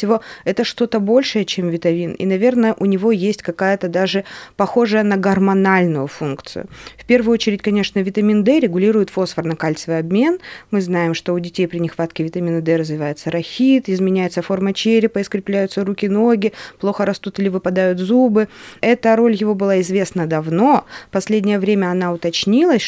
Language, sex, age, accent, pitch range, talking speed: Russian, female, 20-39, native, 180-220 Hz, 150 wpm